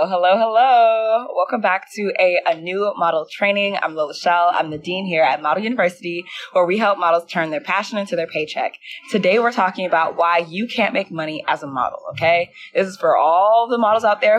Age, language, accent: 20-39, English, American